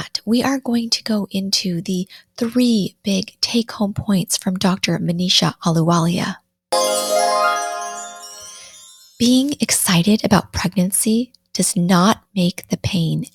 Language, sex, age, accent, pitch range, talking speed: English, female, 20-39, American, 170-210 Hz, 110 wpm